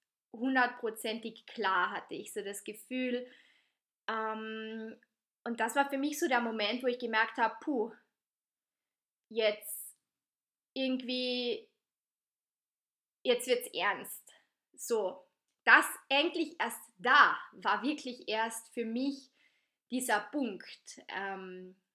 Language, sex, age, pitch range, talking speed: German, female, 20-39, 220-255 Hz, 110 wpm